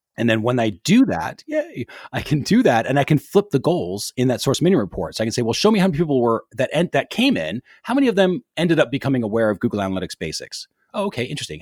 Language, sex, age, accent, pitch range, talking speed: English, male, 30-49, American, 105-155 Hz, 275 wpm